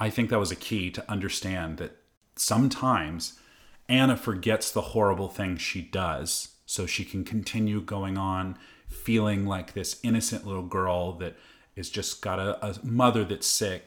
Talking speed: 165 wpm